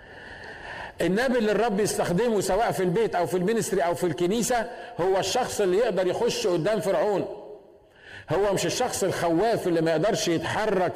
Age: 50-69